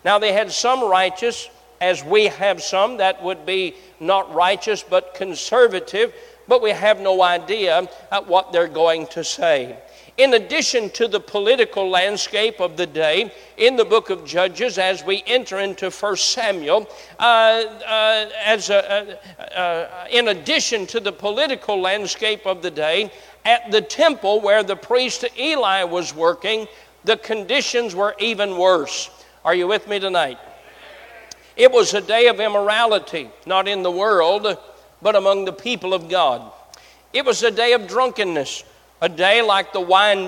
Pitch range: 185-235 Hz